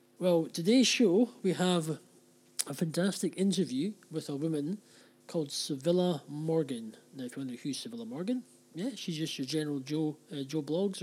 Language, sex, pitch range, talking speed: English, male, 135-175 Hz, 165 wpm